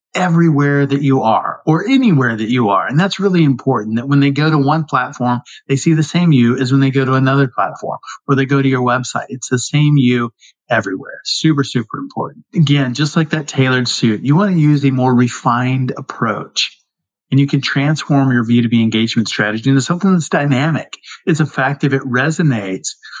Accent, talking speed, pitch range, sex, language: American, 205 wpm, 125-155 Hz, male, English